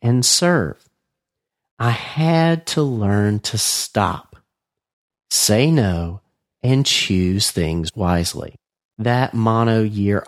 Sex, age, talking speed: male, 40-59, 100 wpm